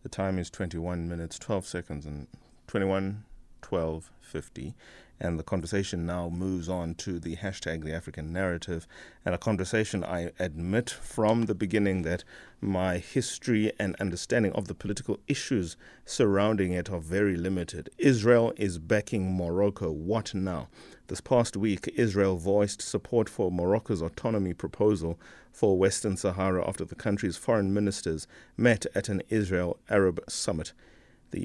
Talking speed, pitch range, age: 150 wpm, 85-105 Hz, 30-49